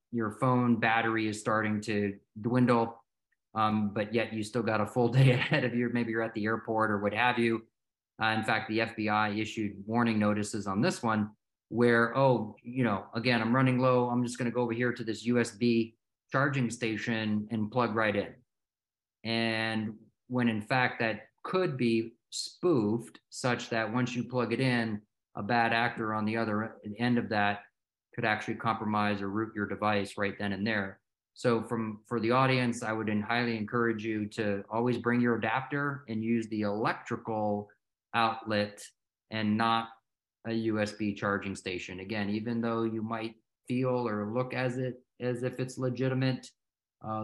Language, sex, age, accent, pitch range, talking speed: English, male, 30-49, American, 105-120 Hz, 175 wpm